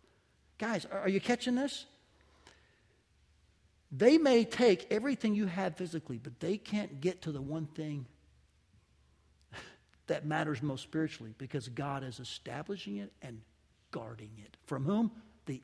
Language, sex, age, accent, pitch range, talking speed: English, male, 60-79, American, 115-170 Hz, 135 wpm